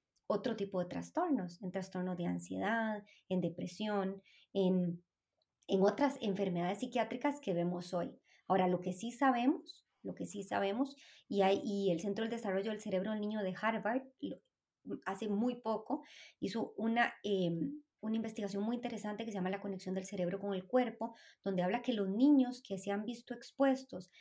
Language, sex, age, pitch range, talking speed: Spanish, male, 30-49, 185-230 Hz, 175 wpm